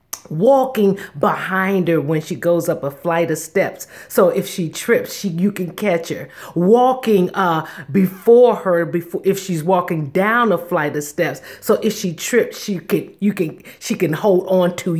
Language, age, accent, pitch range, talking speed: English, 40-59, American, 170-230 Hz, 185 wpm